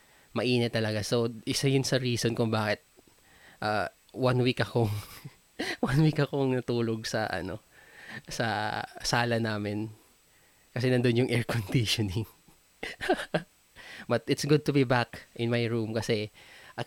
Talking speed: 130 wpm